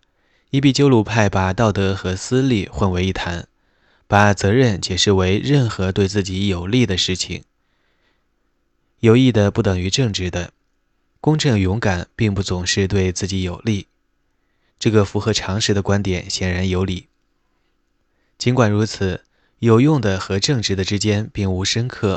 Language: Chinese